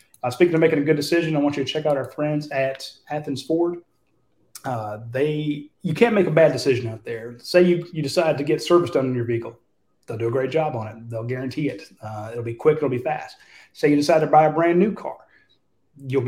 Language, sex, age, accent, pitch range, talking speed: English, male, 30-49, American, 120-155 Hz, 245 wpm